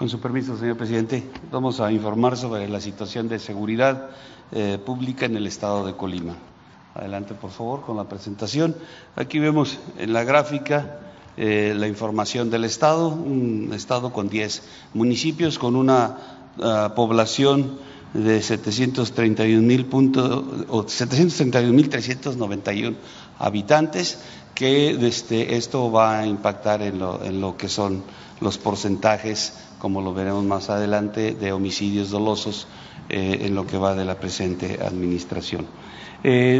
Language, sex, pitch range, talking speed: Spanish, male, 105-135 Hz, 135 wpm